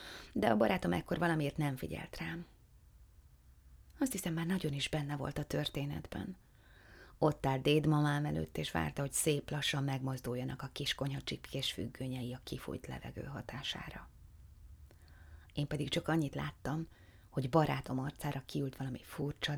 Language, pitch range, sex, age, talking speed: Hungarian, 115-155 Hz, female, 30-49, 140 wpm